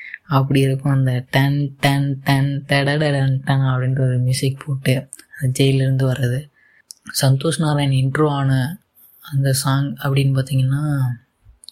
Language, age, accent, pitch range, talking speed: Tamil, 20-39, native, 135-150 Hz, 120 wpm